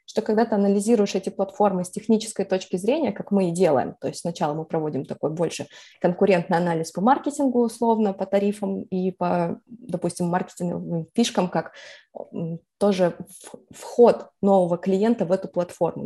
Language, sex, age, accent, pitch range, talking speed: Russian, female, 20-39, native, 185-240 Hz, 155 wpm